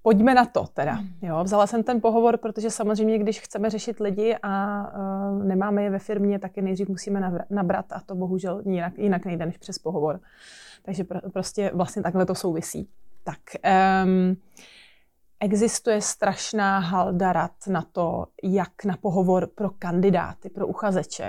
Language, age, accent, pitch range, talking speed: Czech, 20-39, native, 180-205 Hz, 165 wpm